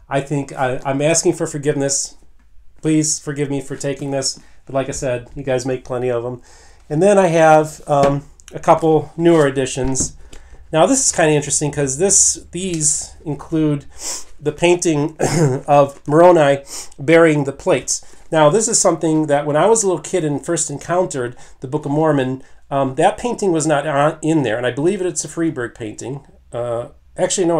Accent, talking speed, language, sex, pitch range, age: American, 180 wpm, English, male, 130-160 Hz, 40-59